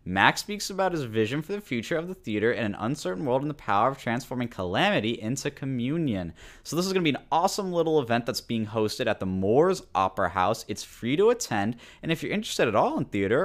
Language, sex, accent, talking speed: English, male, American, 235 wpm